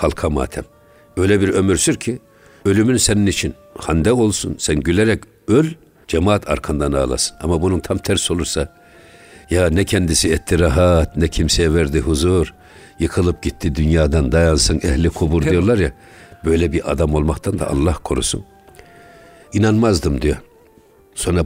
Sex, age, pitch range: male, 60-79, 80-100 Hz